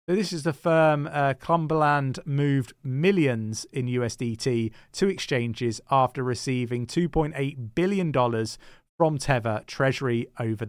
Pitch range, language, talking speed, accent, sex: 115-155 Hz, English, 120 wpm, British, male